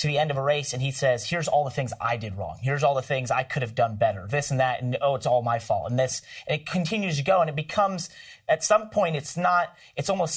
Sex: male